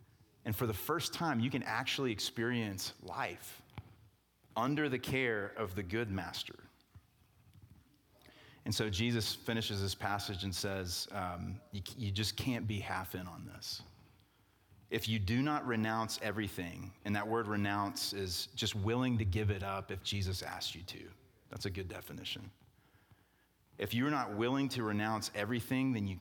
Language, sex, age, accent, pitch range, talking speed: English, male, 30-49, American, 100-115 Hz, 160 wpm